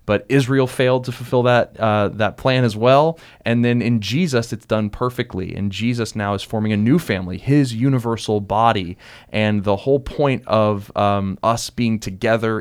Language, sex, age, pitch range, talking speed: English, male, 30-49, 95-115 Hz, 180 wpm